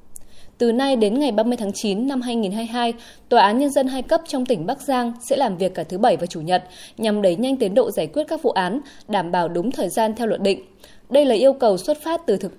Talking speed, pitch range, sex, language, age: 255 wpm, 195-265 Hz, female, Vietnamese, 20-39